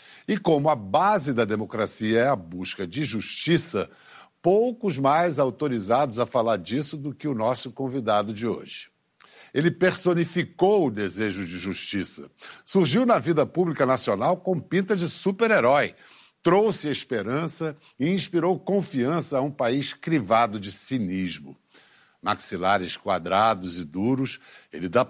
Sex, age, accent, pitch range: male, 60-79, Brazilian, 115-170 Hz